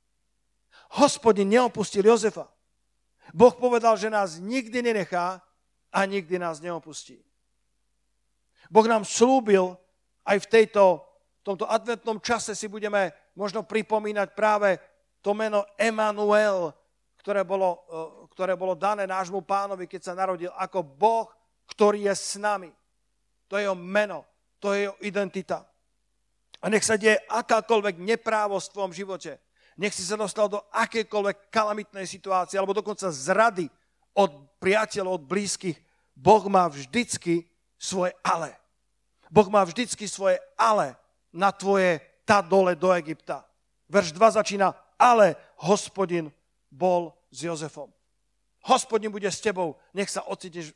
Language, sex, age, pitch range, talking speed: Slovak, male, 50-69, 180-215 Hz, 130 wpm